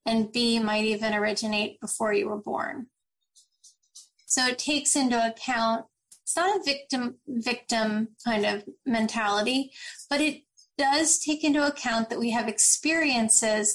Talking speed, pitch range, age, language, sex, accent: 140 wpm, 220-275 Hz, 30-49, English, female, American